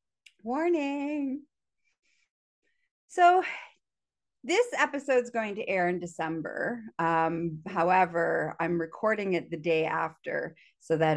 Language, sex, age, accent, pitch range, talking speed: English, female, 40-59, American, 160-245 Hz, 105 wpm